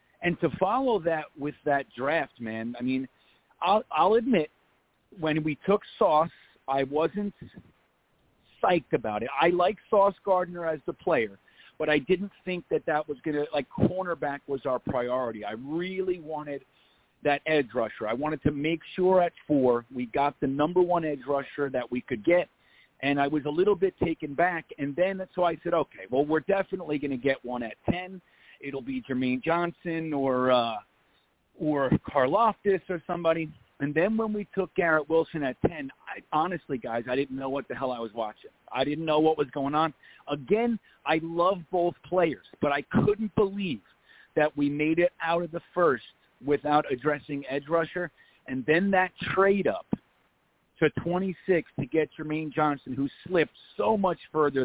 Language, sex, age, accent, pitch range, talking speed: English, male, 40-59, American, 140-175 Hz, 180 wpm